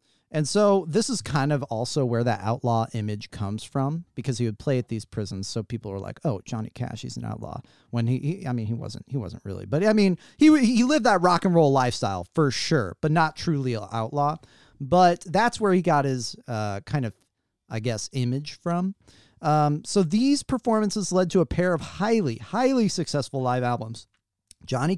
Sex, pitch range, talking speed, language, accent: male, 120-195 Hz, 205 wpm, English, American